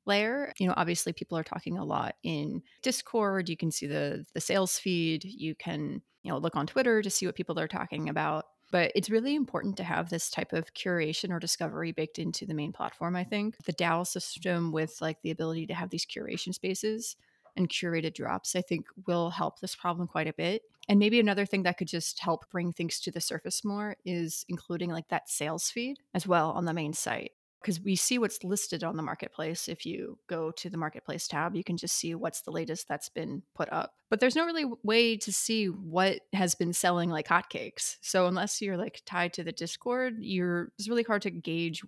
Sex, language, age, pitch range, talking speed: female, English, 30-49, 170-210 Hz, 220 wpm